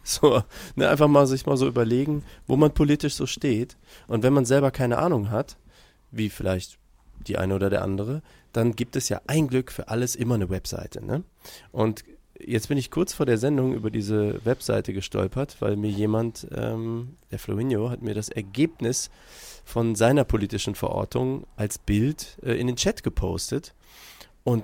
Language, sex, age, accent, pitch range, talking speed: German, male, 30-49, German, 100-130 Hz, 175 wpm